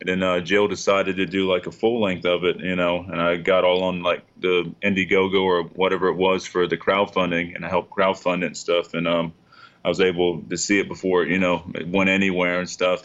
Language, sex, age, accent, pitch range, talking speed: English, male, 20-39, American, 85-95 Hz, 245 wpm